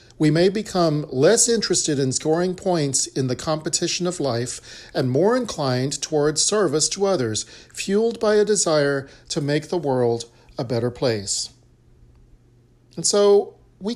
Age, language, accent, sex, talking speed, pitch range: 40-59, English, American, male, 145 wpm, 125-195 Hz